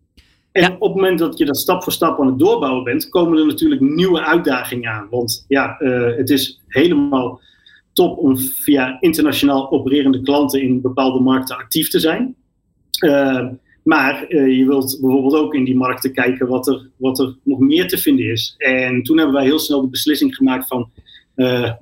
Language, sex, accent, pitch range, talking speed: Dutch, male, Dutch, 125-150 Hz, 185 wpm